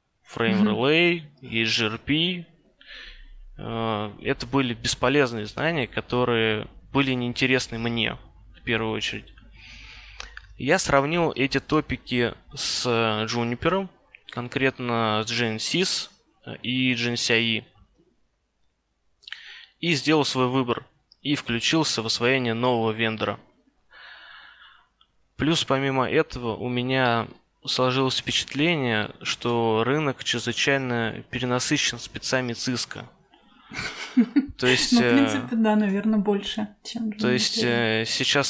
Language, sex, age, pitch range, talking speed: Russian, male, 20-39, 115-145 Hz, 90 wpm